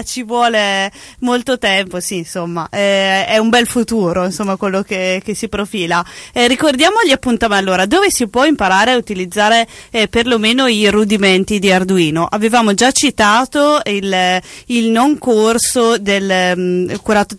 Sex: female